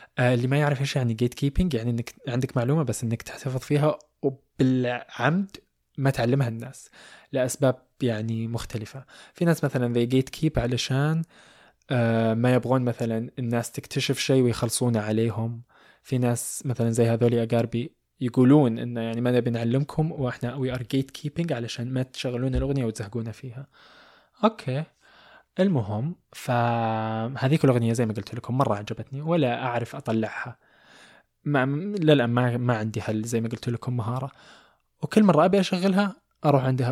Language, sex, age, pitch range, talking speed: Arabic, male, 20-39, 120-145 Hz, 150 wpm